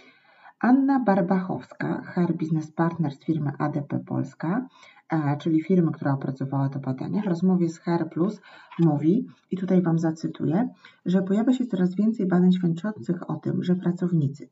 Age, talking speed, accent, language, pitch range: 30-49, 150 wpm, native, Polish, 160-190 Hz